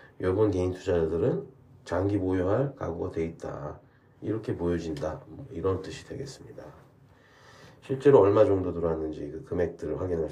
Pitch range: 90-115 Hz